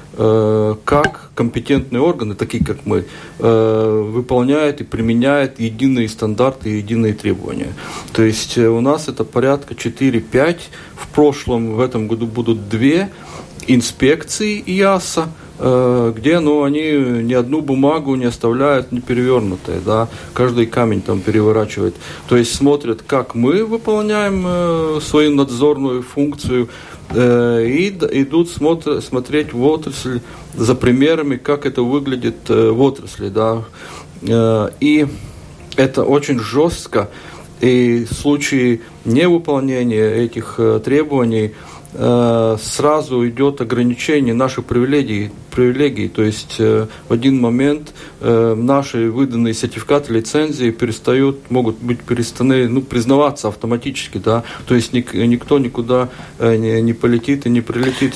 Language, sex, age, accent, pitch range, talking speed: Russian, male, 40-59, native, 115-140 Hz, 120 wpm